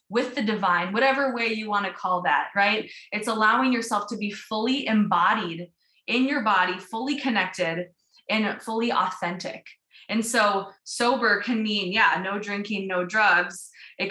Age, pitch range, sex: 20-39, 195-240 Hz, female